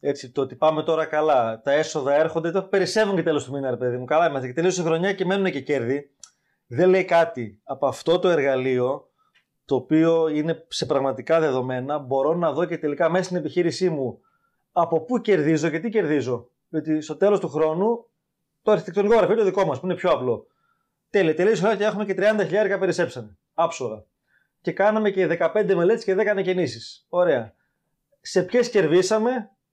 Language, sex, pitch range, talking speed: Greek, male, 150-190 Hz, 190 wpm